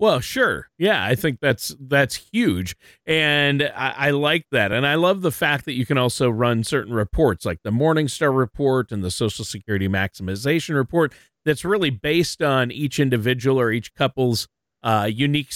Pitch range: 110-145 Hz